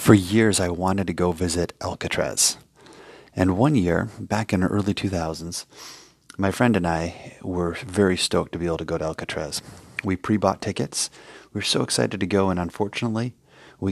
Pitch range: 85-100 Hz